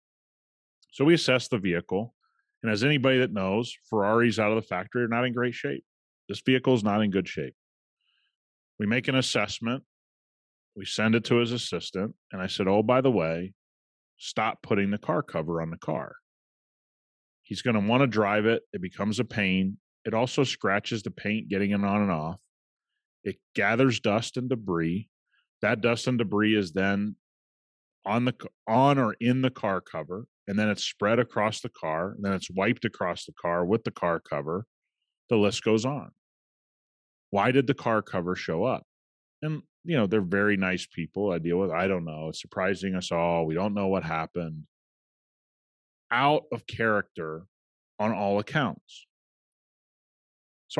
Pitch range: 95-125 Hz